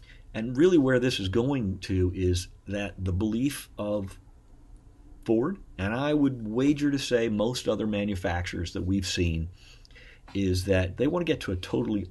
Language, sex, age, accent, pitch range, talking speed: English, male, 50-69, American, 90-115 Hz, 170 wpm